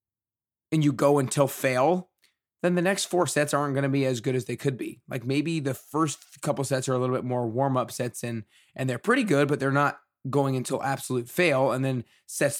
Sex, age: male, 20-39